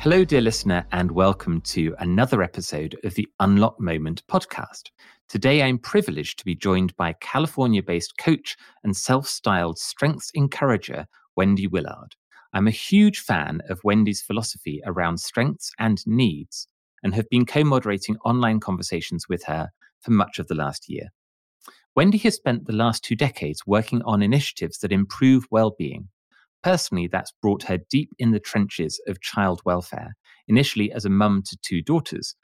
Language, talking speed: English, 155 wpm